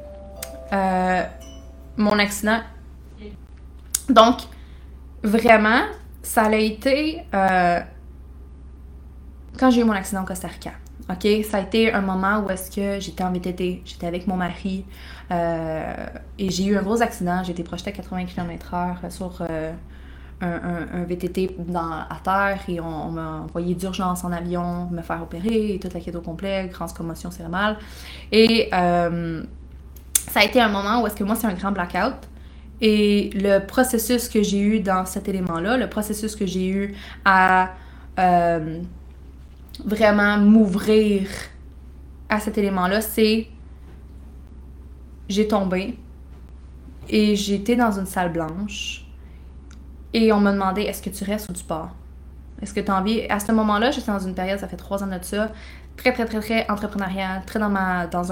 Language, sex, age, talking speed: English, female, 20-39, 165 wpm